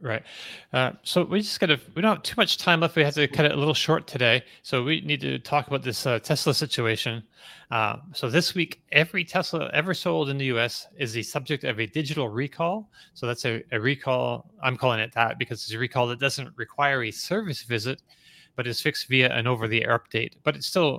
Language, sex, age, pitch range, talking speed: English, male, 30-49, 115-155 Hz, 230 wpm